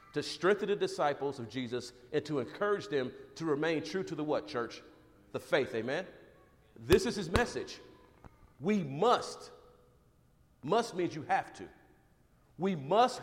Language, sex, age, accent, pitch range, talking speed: English, male, 50-69, American, 145-215 Hz, 150 wpm